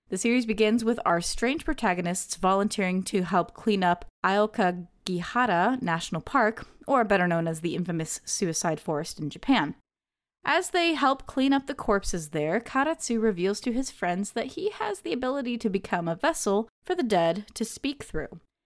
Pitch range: 180-245 Hz